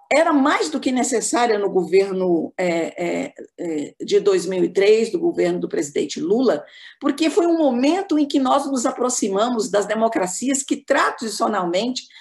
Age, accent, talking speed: 50-69, Brazilian, 135 wpm